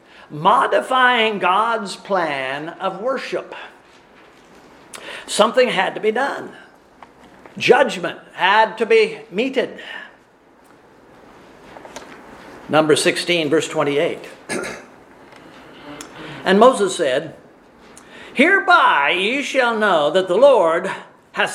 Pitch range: 185-255 Hz